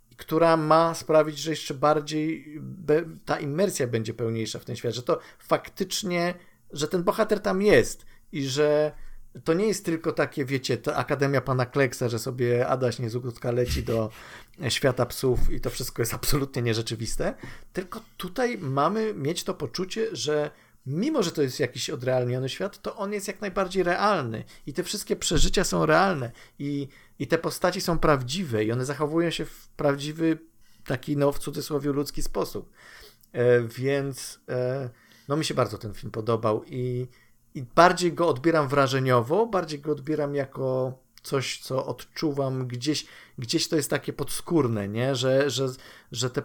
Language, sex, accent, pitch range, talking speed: Polish, male, native, 125-155 Hz, 165 wpm